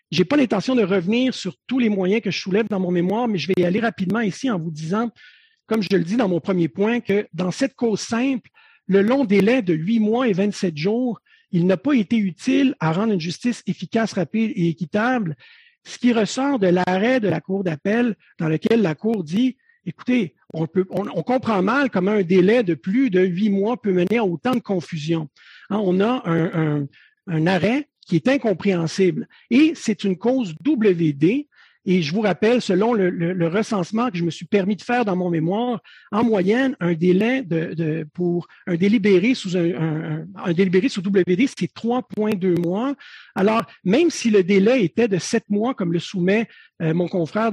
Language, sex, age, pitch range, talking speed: English, male, 50-69, 180-240 Hz, 205 wpm